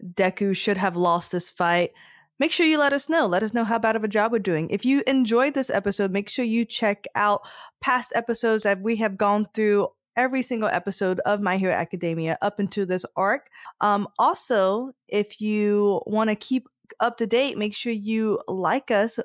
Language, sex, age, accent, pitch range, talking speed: English, female, 20-39, American, 180-230 Hz, 205 wpm